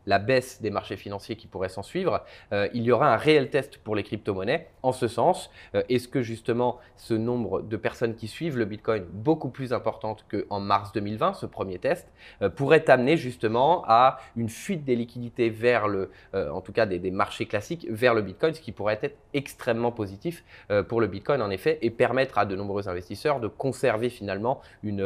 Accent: French